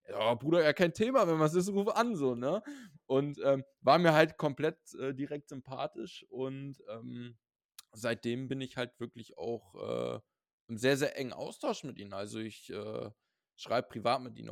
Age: 20-39